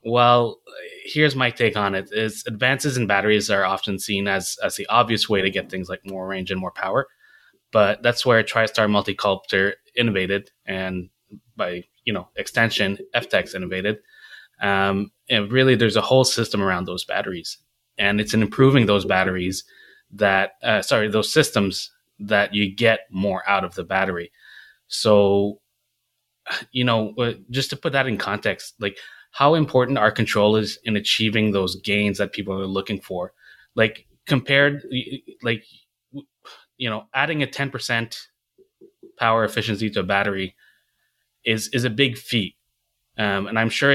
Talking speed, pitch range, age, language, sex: 155 wpm, 100-125 Hz, 20-39, English, male